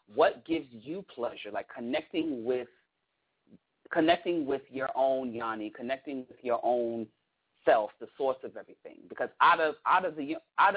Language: English